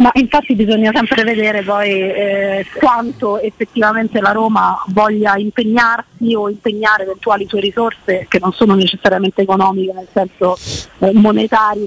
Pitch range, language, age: 195-235 Hz, Italian, 30-49